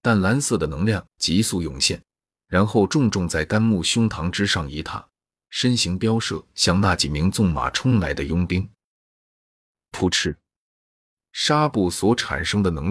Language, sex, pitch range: Chinese, male, 85-110 Hz